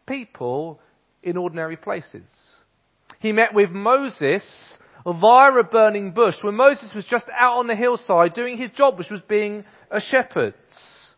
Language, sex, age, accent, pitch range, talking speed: English, male, 40-59, British, 140-220 Hz, 150 wpm